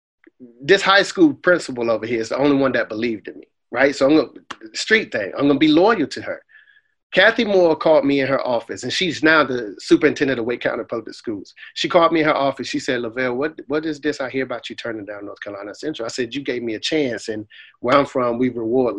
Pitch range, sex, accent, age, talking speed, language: 120-155 Hz, male, American, 30-49, 255 wpm, English